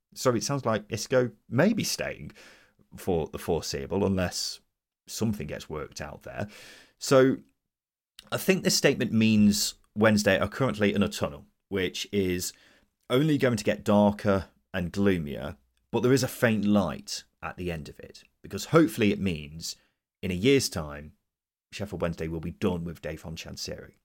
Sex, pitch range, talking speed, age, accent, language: male, 85-120 Hz, 165 wpm, 30-49, British, English